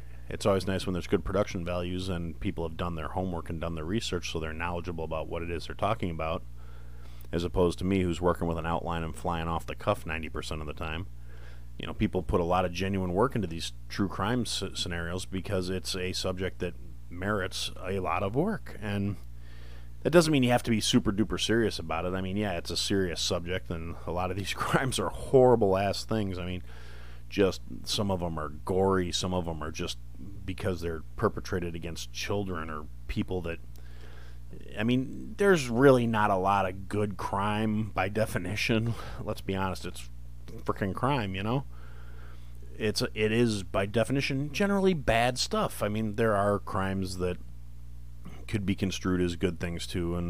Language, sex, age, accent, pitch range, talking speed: English, male, 30-49, American, 80-100 Hz, 195 wpm